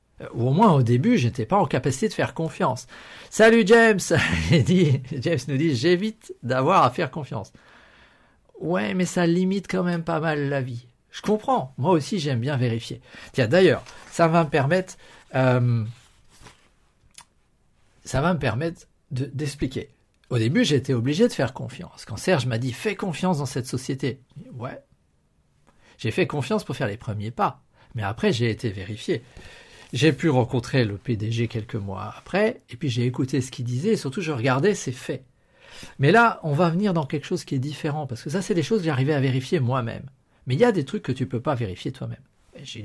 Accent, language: French, French